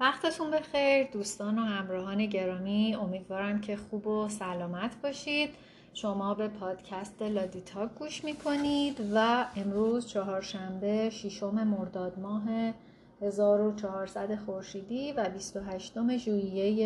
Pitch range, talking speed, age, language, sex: 195-235 Hz, 105 wpm, 30-49, Persian, female